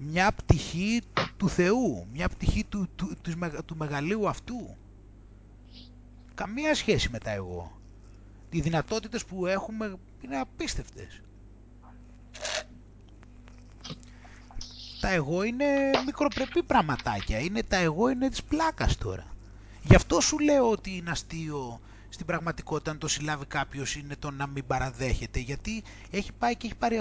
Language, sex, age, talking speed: Greek, male, 30-49, 130 wpm